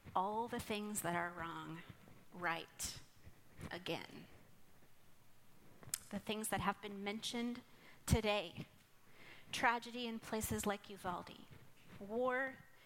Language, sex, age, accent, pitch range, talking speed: English, female, 30-49, American, 190-240 Hz, 100 wpm